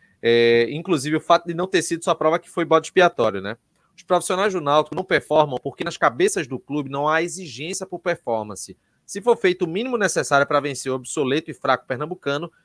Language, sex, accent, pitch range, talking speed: Portuguese, male, Brazilian, 140-175 Hz, 210 wpm